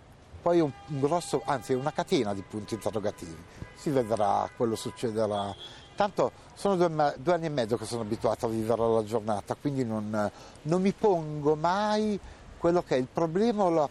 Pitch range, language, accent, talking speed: 110-165 Hz, Italian, native, 175 wpm